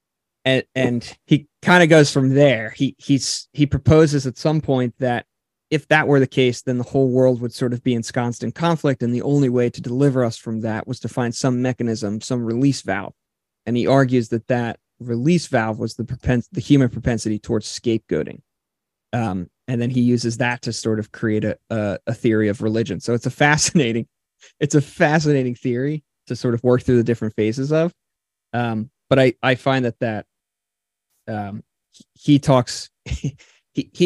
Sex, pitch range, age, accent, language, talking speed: male, 110-130 Hz, 20-39, American, English, 190 wpm